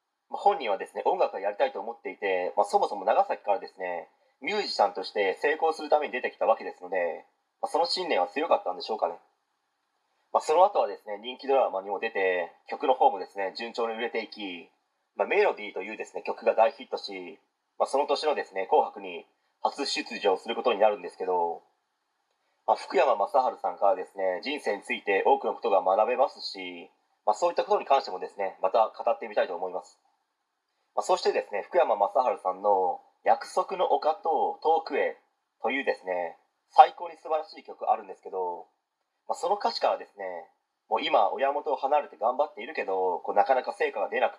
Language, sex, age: Japanese, male, 30-49